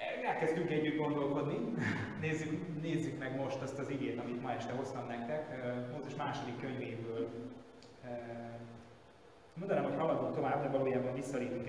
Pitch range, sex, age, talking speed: 120-145 Hz, male, 20-39, 130 wpm